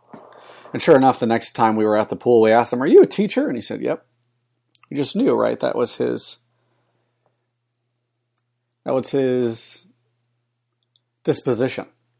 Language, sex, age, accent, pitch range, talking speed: English, male, 40-59, American, 115-120 Hz, 160 wpm